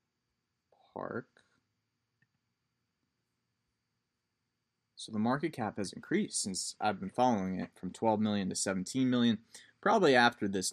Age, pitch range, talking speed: 20-39, 100-125 Hz, 115 wpm